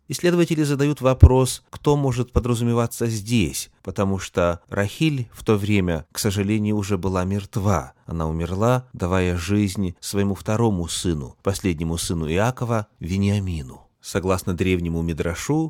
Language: Russian